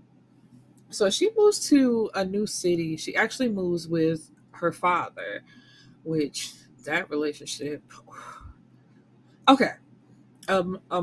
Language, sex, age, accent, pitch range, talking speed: English, female, 20-39, American, 155-200 Hz, 105 wpm